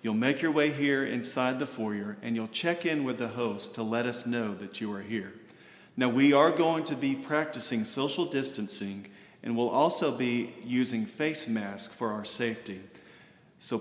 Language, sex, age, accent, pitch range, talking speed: English, male, 40-59, American, 115-140 Hz, 185 wpm